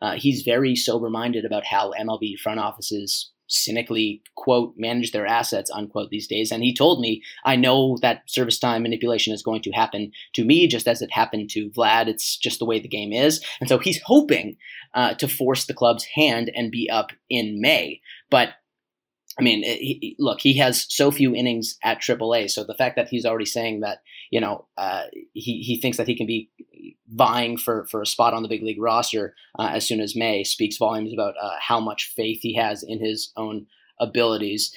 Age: 20-39